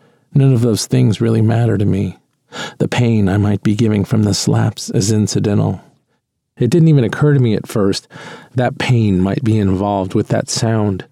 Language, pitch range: English, 105-130 Hz